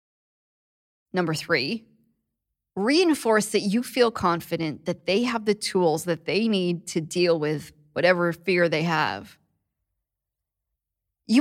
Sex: female